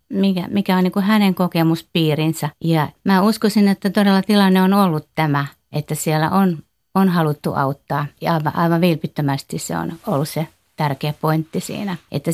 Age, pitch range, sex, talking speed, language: 50-69, 155-185 Hz, female, 160 wpm, Finnish